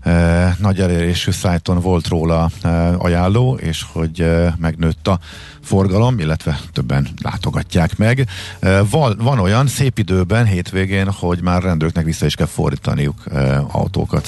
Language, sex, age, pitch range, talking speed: Hungarian, male, 50-69, 80-100 Hz, 120 wpm